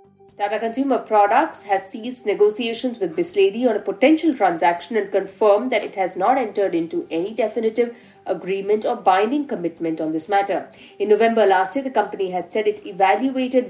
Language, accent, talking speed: English, Indian, 170 wpm